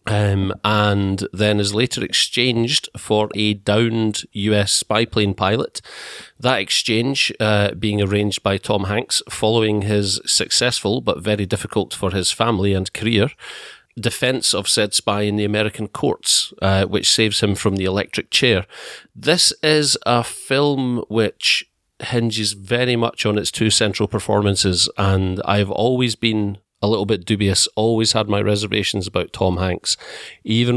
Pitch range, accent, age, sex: 95-110 Hz, British, 40-59, male